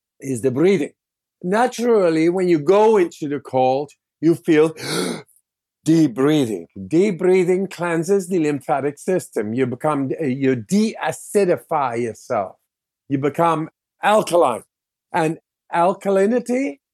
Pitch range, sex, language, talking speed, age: 145-190 Hz, male, English, 105 wpm, 50-69